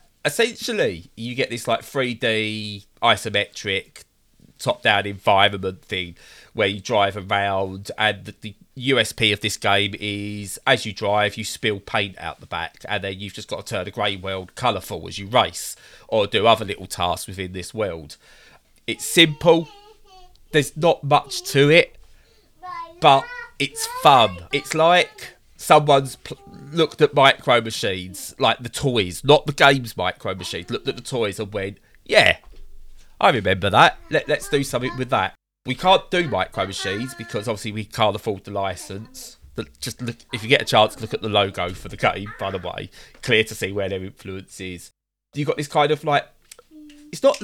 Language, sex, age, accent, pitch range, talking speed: English, male, 20-39, British, 100-155 Hz, 170 wpm